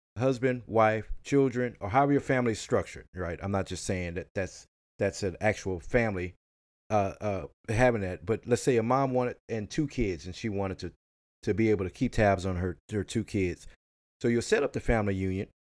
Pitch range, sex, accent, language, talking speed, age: 90-120 Hz, male, American, English, 210 wpm, 30-49